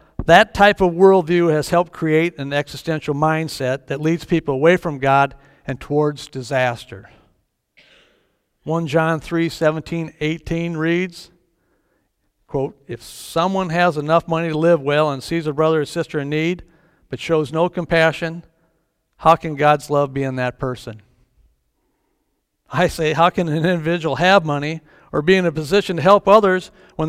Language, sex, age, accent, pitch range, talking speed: English, male, 60-79, American, 140-180 Hz, 155 wpm